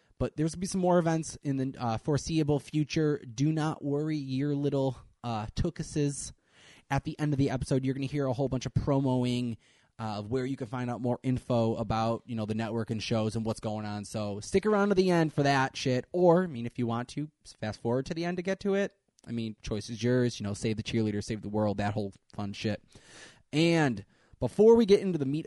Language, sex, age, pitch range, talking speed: English, male, 20-39, 120-155 Hz, 245 wpm